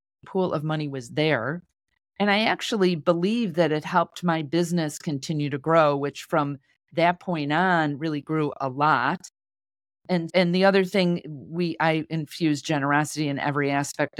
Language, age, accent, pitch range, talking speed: English, 40-59, American, 140-170 Hz, 160 wpm